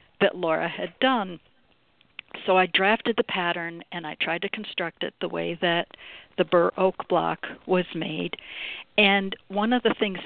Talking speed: 170 wpm